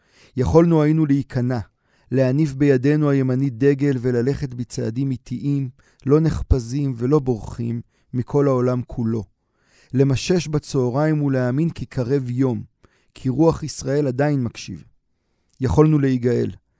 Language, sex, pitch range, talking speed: Hebrew, male, 120-140 Hz, 105 wpm